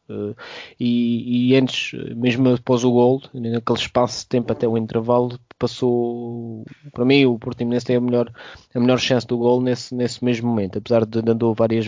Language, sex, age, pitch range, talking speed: Portuguese, male, 20-39, 115-125 Hz, 175 wpm